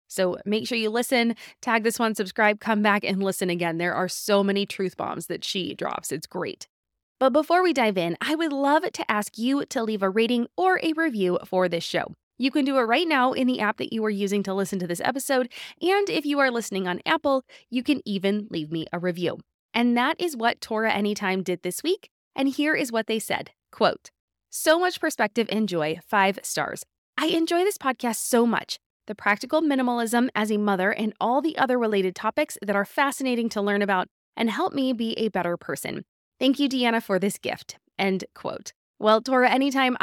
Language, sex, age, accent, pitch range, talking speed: English, female, 20-39, American, 200-275 Hz, 215 wpm